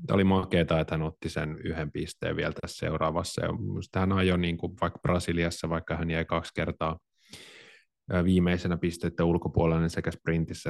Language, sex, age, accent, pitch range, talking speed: Finnish, male, 30-49, native, 80-90 Hz, 155 wpm